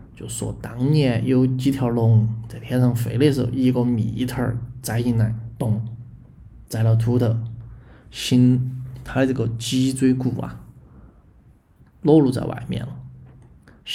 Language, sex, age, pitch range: Chinese, male, 20-39, 115-130 Hz